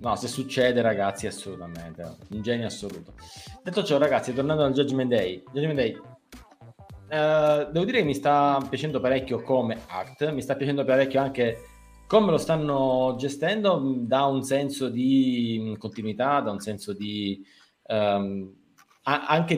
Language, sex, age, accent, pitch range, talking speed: Italian, male, 20-39, native, 110-140 Hz, 145 wpm